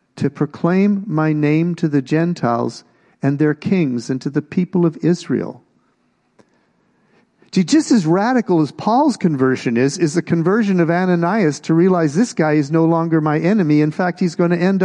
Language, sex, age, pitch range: English, male, 50-69, 130-185 Hz